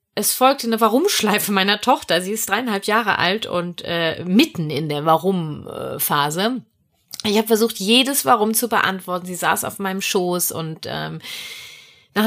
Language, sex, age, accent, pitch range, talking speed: German, female, 30-49, German, 165-225 Hz, 155 wpm